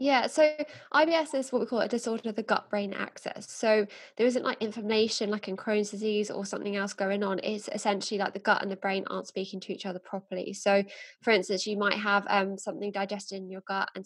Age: 20-39